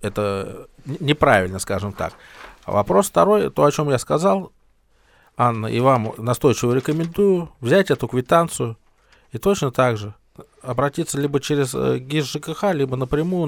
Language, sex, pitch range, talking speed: Russian, male, 105-140 Hz, 135 wpm